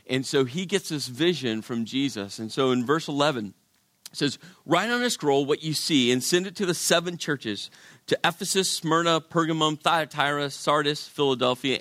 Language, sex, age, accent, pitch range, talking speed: English, male, 40-59, American, 140-185 Hz, 185 wpm